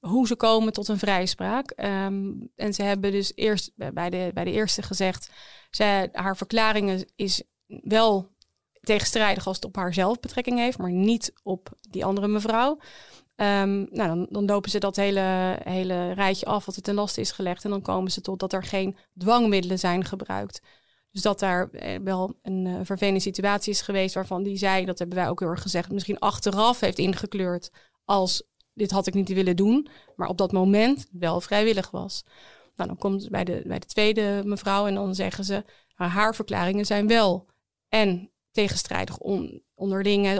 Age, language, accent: 30-49, Dutch, Dutch